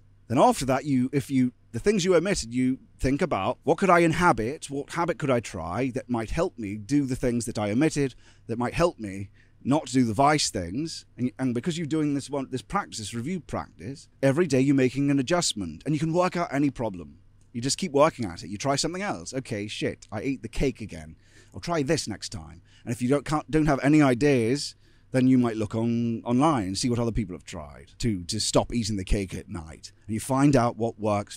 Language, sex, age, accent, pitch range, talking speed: English, male, 30-49, British, 105-135 Hz, 230 wpm